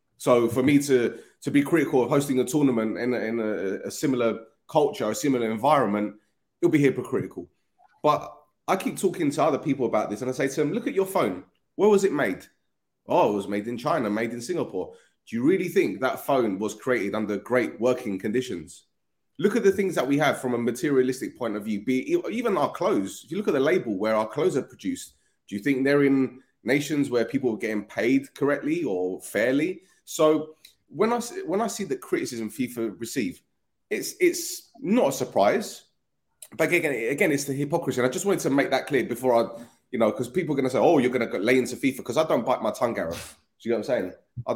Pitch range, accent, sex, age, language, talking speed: 115-160 Hz, British, male, 30-49, English, 230 wpm